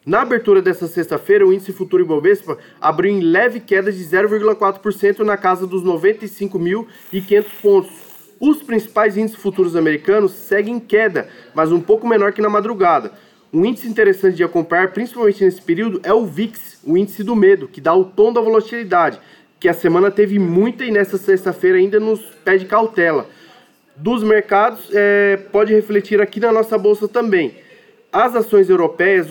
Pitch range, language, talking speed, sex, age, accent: 185-215 Hz, Portuguese, 165 wpm, male, 20-39, Brazilian